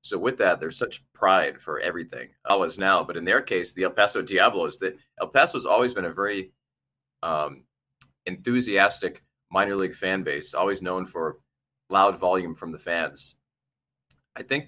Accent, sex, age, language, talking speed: American, male, 30-49, English, 170 wpm